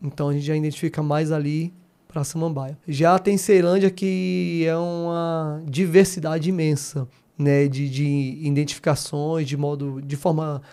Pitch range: 155-200 Hz